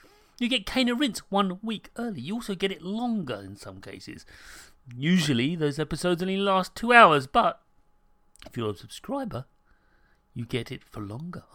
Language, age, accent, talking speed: English, 40-59, British, 165 wpm